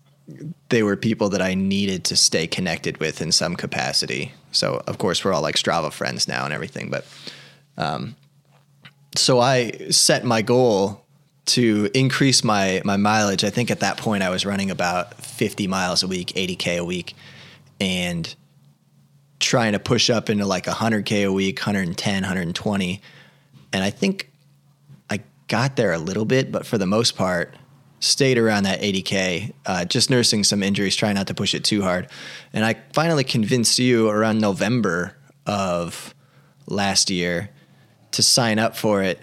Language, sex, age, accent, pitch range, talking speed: English, male, 20-39, American, 100-130 Hz, 165 wpm